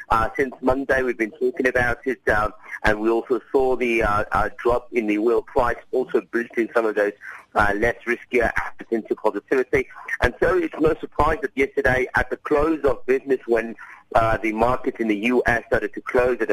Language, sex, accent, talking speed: English, male, British, 200 wpm